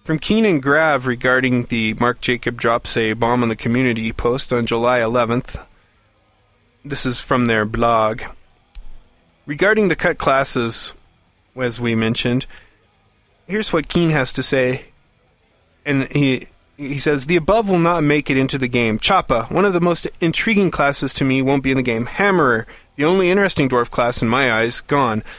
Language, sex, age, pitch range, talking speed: English, male, 20-39, 120-165 Hz, 175 wpm